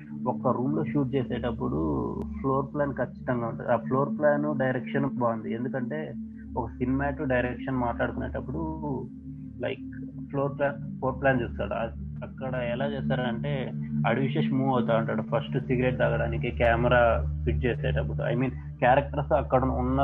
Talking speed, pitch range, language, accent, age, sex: 130 wpm, 115-135 Hz, Telugu, native, 20-39, male